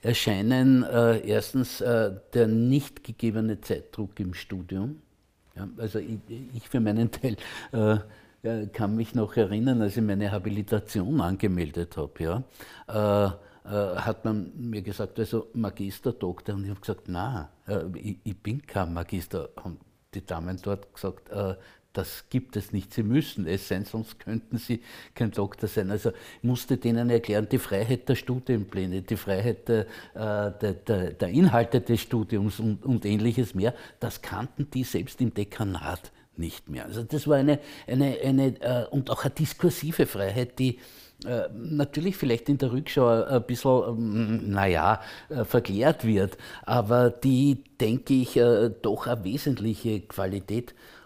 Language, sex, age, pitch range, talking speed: German, male, 60-79, 100-125 Hz, 150 wpm